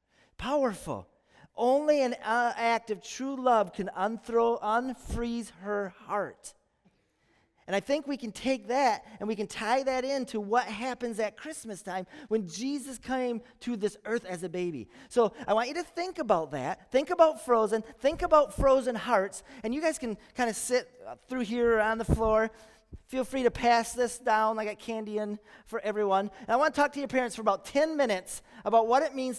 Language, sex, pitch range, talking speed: English, male, 220-265 Hz, 195 wpm